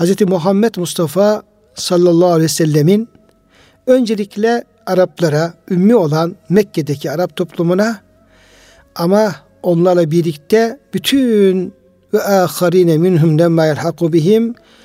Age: 60-79